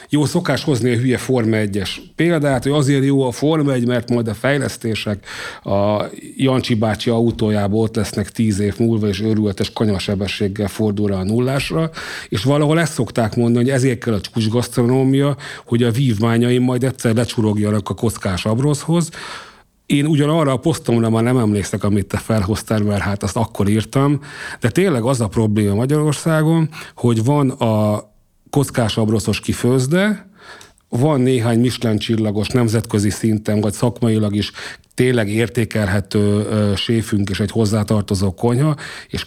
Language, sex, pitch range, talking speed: Hungarian, male, 105-130 Hz, 145 wpm